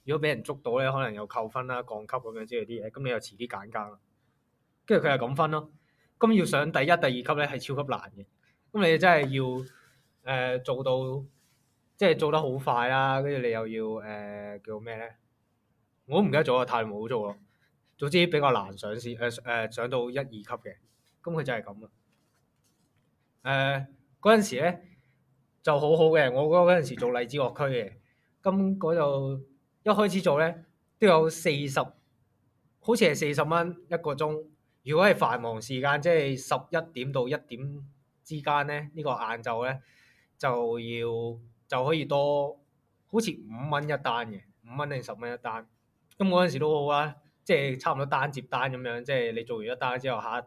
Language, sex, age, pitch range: Chinese, male, 20-39, 120-150 Hz